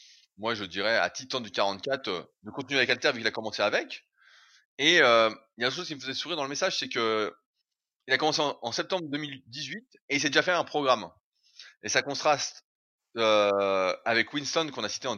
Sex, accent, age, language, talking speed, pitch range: male, French, 20-39, French, 225 wpm, 120-155 Hz